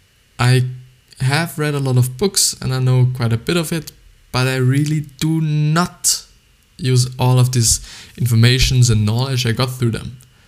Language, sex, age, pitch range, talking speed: English, male, 20-39, 115-130 Hz, 180 wpm